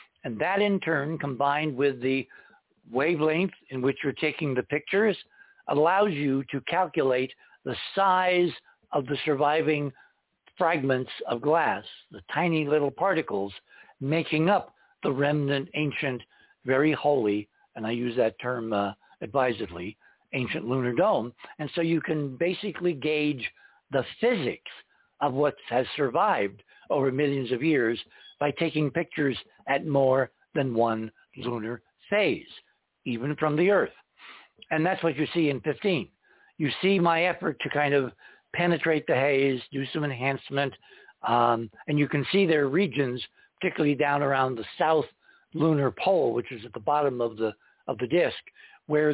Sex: male